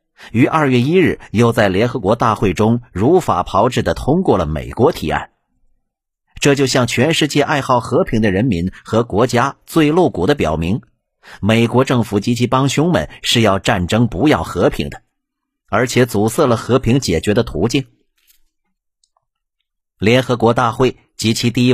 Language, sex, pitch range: Chinese, male, 105-130 Hz